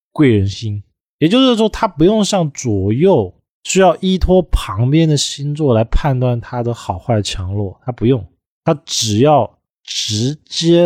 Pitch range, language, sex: 105-155 Hz, Chinese, male